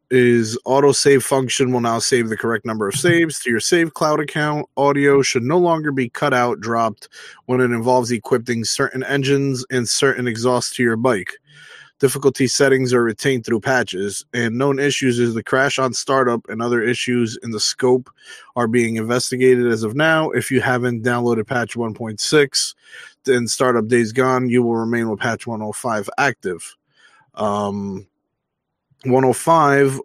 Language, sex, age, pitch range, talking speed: English, male, 20-39, 115-135 Hz, 170 wpm